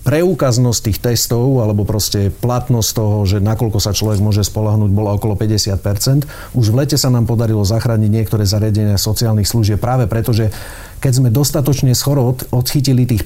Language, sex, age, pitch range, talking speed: Slovak, male, 40-59, 105-135 Hz, 165 wpm